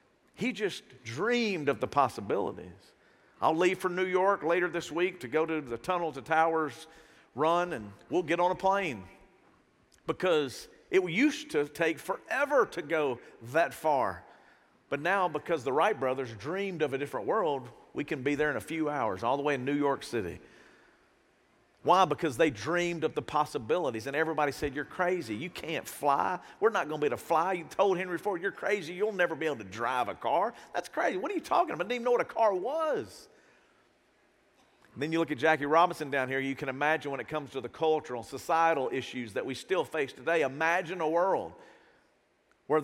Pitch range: 145-185 Hz